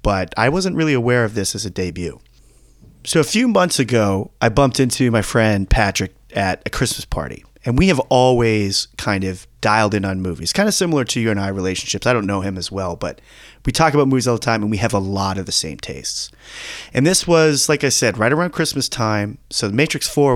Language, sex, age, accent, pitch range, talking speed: English, male, 30-49, American, 95-135 Hz, 235 wpm